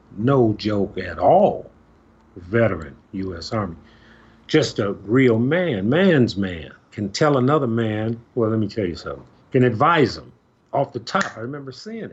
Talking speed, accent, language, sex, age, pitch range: 160 wpm, American, English, male, 50-69, 105-145 Hz